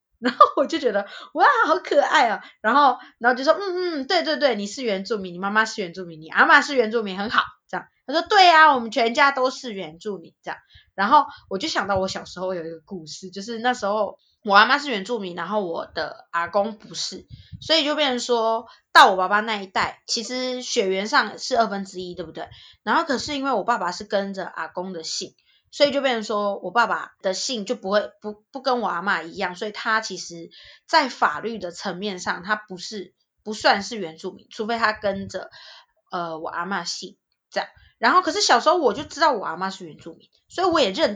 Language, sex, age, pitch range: Chinese, female, 20-39, 185-255 Hz